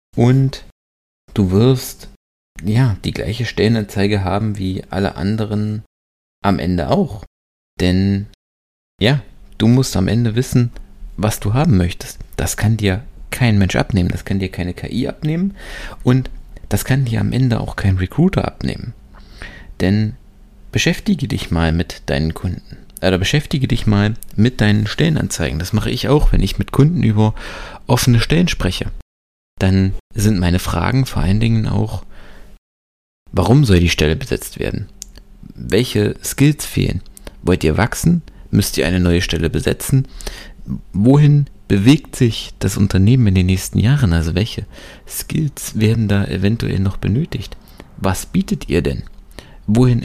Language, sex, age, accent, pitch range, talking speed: German, male, 30-49, German, 90-120 Hz, 145 wpm